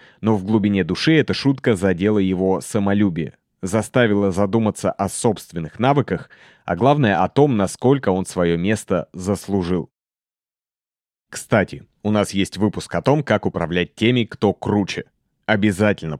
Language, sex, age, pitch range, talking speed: Russian, male, 30-49, 90-115 Hz, 135 wpm